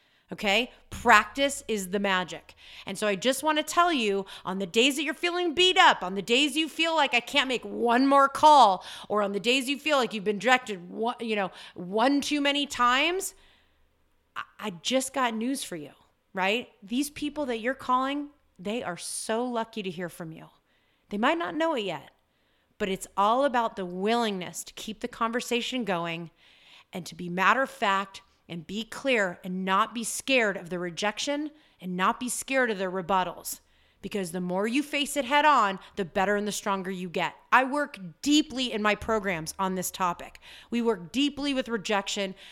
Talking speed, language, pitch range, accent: 195 wpm, English, 195-255 Hz, American